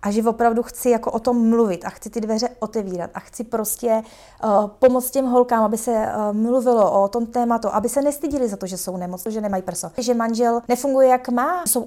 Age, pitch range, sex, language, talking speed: 20-39, 205-245 Hz, female, Czech, 220 wpm